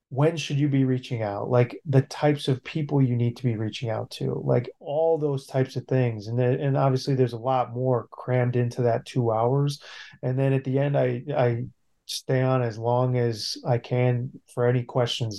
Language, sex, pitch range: English, male, 120-140 Hz